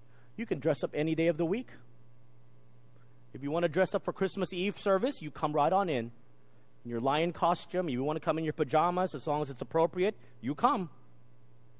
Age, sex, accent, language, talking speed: 40-59, male, American, English, 215 wpm